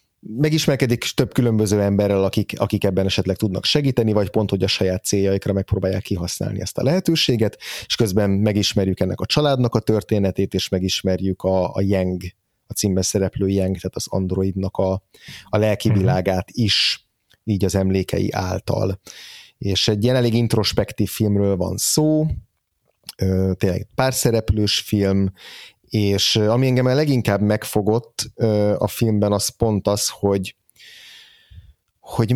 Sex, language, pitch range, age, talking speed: male, Hungarian, 95-115 Hz, 30-49, 135 wpm